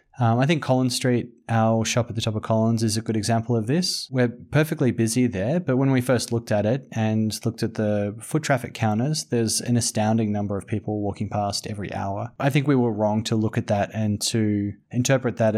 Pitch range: 110-130 Hz